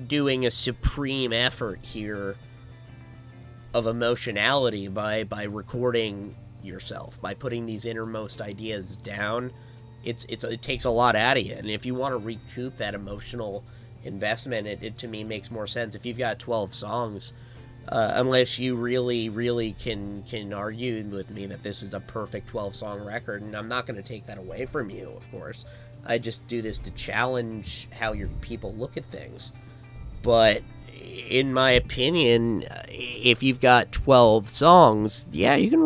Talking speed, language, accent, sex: 170 wpm, English, American, male